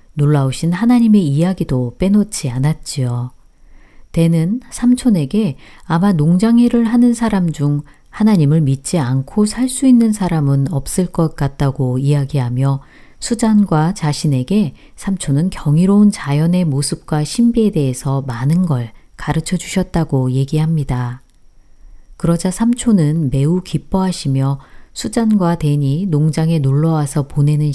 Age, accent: 40-59, native